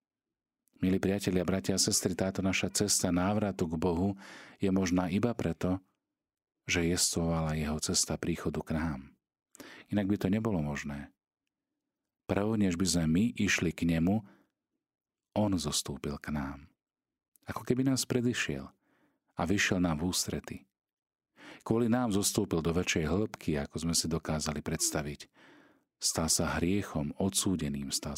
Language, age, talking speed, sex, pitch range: Slovak, 40-59, 135 wpm, male, 80-100 Hz